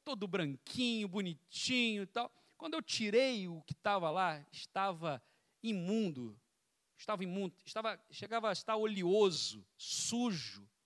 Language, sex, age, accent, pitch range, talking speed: Portuguese, male, 50-69, Brazilian, 160-225 Hz, 115 wpm